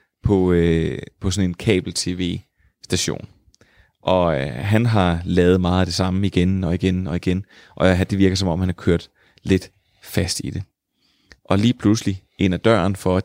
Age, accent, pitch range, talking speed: 30-49, native, 90-105 Hz, 180 wpm